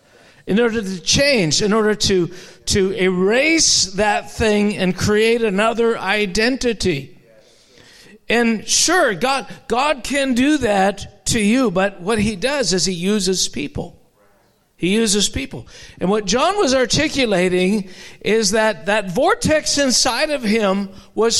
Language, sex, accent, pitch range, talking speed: English, male, American, 200-265 Hz, 135 wpm